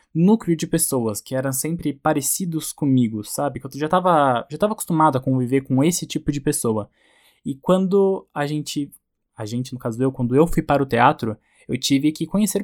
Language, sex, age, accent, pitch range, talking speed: Portuguese, male, 10-29, Brazilian, 130-155 Hz, 200 wpm